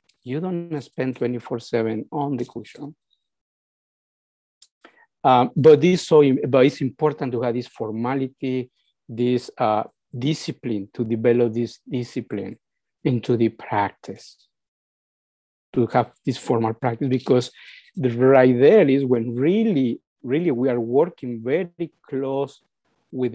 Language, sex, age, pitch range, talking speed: English, male, 50-69, 115-140 Hz, 120 wpm